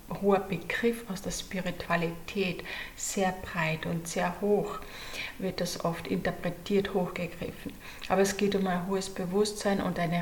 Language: German